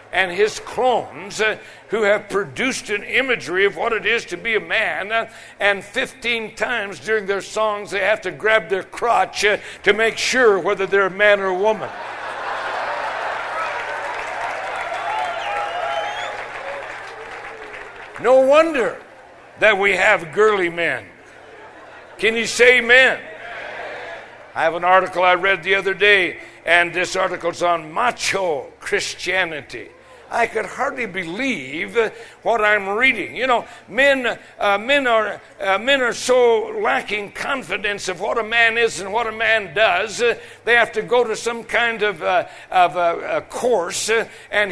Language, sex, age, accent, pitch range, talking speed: English, male, 60-79, American, 205-270 Hz, 150 wpm